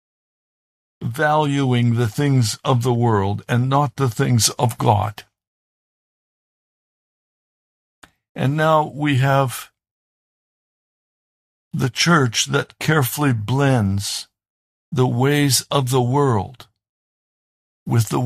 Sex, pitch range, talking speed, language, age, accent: male, 110-140 Hz, 90 wpm, English, 60-79, American